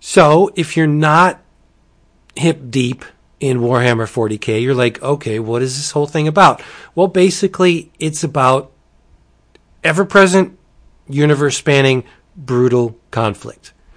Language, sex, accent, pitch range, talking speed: English, male, American, 120-155 Hz, 110 wpm